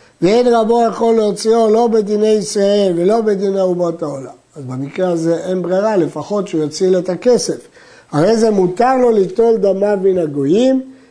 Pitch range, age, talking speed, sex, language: 165-225 Hz, 60-79, 155 wpm, male, Hebrew